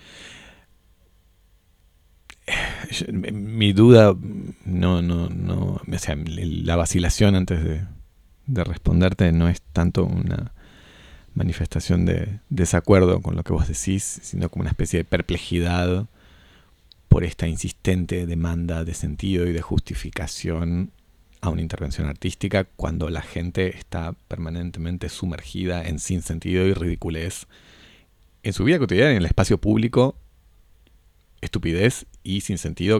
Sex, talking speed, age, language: male, 120 wpm, 30-49, Spanish